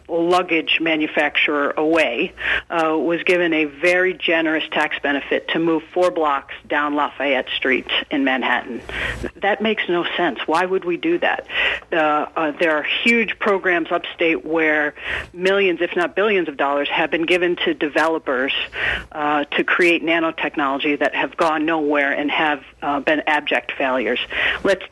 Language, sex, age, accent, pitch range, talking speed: English, female, 50-69, American, 160-200 Hz, 150 wpm